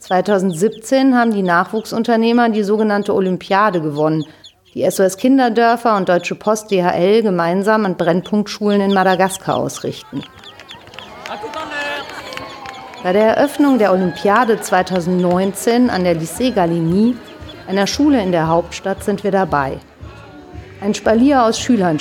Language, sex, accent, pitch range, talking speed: German, female, German, 170-220 Hz, 115 wpm